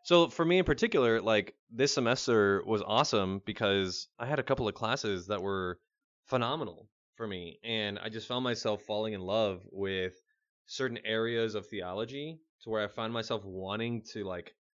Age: 20-39